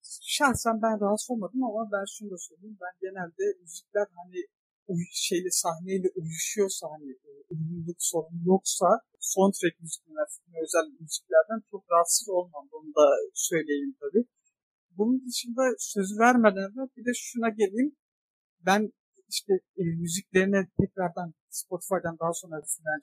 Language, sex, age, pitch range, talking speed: Turkish, male, 50-69, 170-215 Hz, 135 wpm